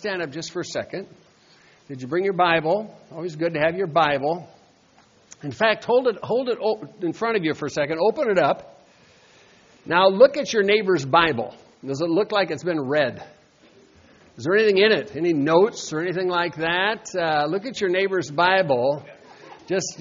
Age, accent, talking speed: 60-79, American, 190 wpm